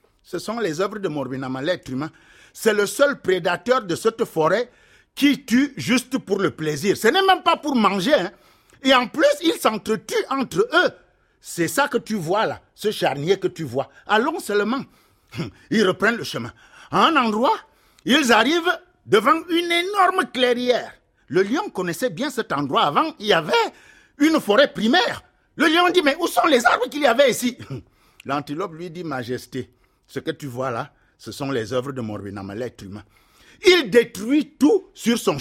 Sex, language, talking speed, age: male, French, 185 wpm, 50-69